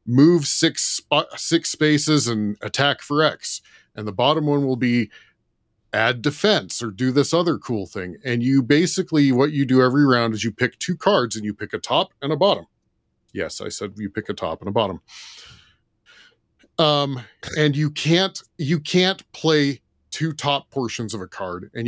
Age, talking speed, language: 40-59, 185 wpm, English